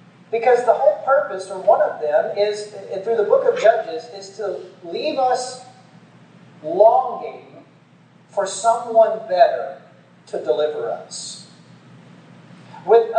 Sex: male